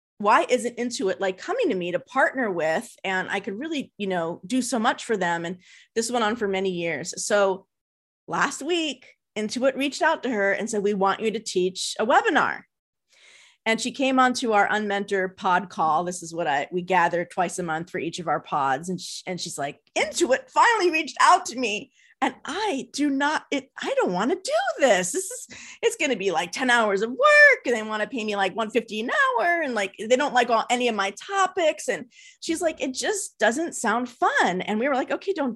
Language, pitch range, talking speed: English, 200-320 Hz, 225 wpm